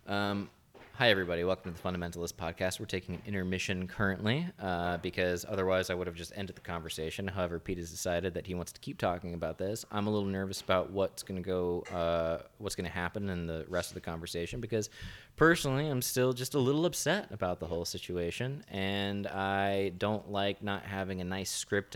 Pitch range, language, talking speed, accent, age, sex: 90-100 Hz, English, 205 wpm, American, 20-39, male